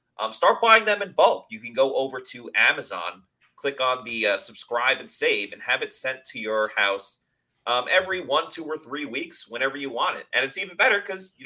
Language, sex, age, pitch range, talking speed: English, male, 30-49, 110-185 Hz, 225 wpm